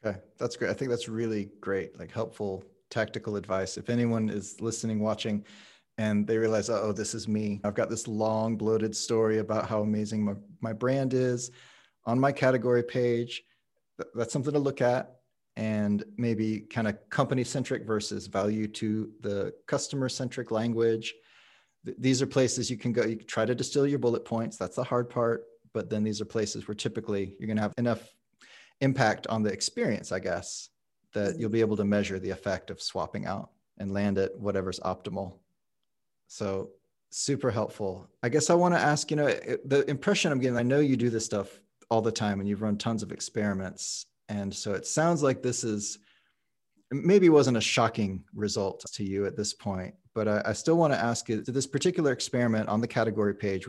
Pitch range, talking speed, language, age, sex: 105-125 Hz, 195 wpm, English, 30-49, male